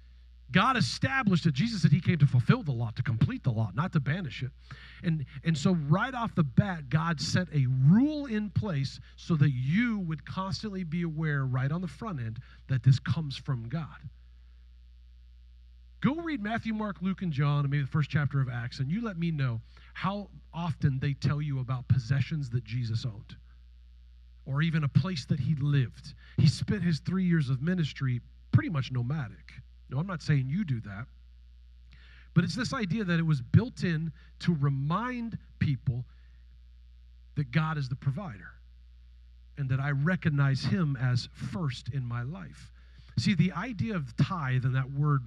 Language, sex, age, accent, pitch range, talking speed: English, male, 40-59, American, 115-160 Hz, 180 wpm